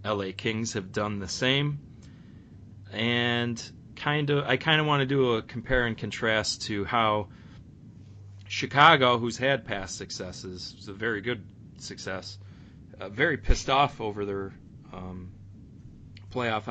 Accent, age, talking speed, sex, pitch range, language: American, 30-49, 140 wpm, male, 100-120 Hz, English